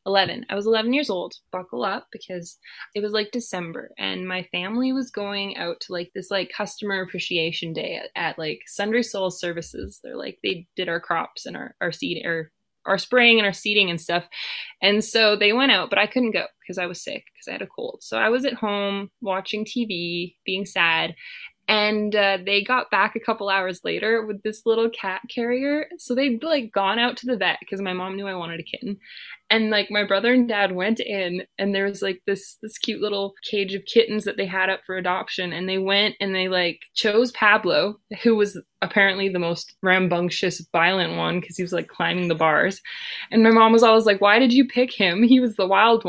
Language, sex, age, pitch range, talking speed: English, female, 20-39, 185-225 Hz, 220 wpm